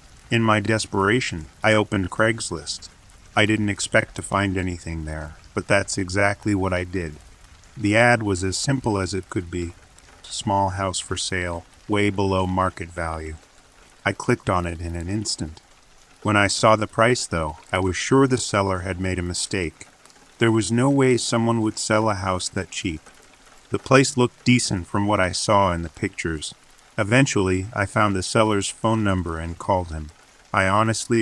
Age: 40-59